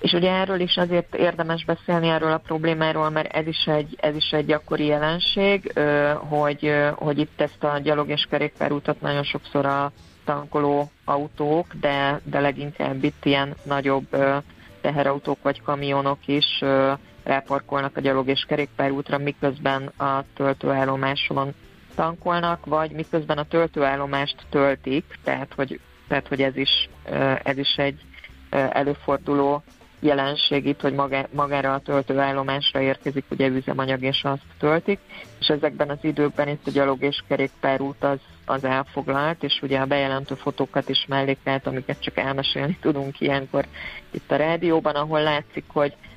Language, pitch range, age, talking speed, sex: Hungarian, 135-150 Hz, 30-49, 135 wpm, female